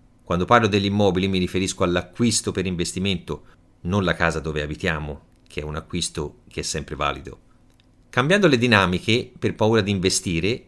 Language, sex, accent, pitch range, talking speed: Italian, male, native, 90-135 Hz, 165 wpm